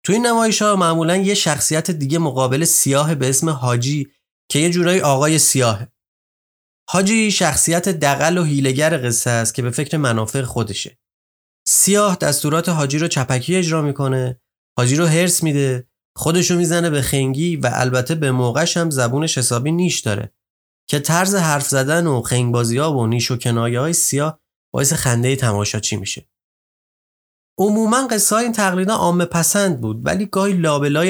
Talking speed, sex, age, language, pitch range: 160 wpm, male, 30-49, Persian, 125-170 Hz